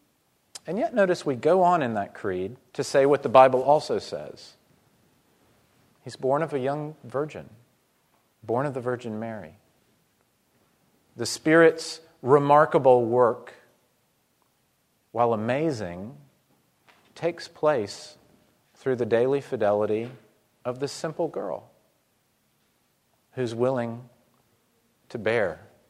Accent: American